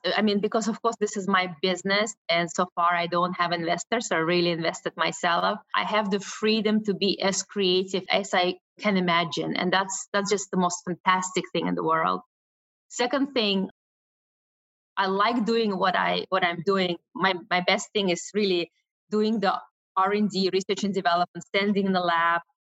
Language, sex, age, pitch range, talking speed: English, female, 20-39, 180-215 Hz, 190 wpm